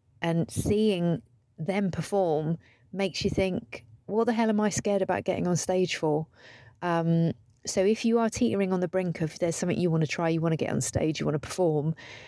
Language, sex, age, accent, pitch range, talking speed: English, female, 30-49, British, 145-200 Hz, 215 wpm